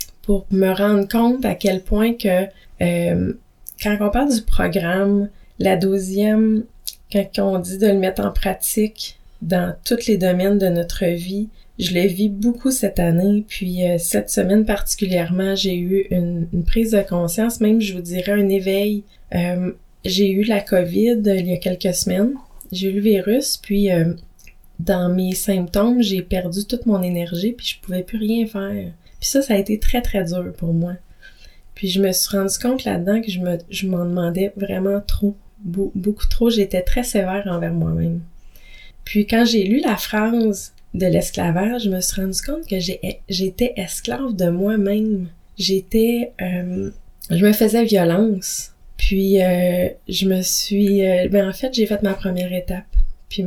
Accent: Canadian